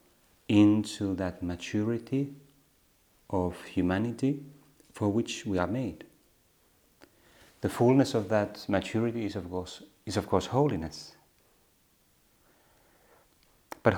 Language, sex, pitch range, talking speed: Finnish, male, 90-115 Hz, 90 wpm